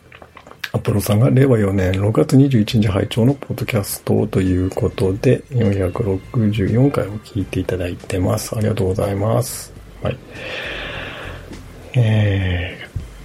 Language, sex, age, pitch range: Japanese, male, 50-69, 95-120 Hz